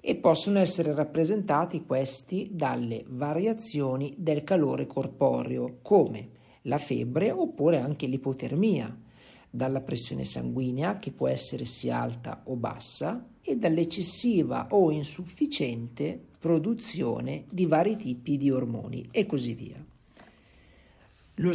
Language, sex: Italian, male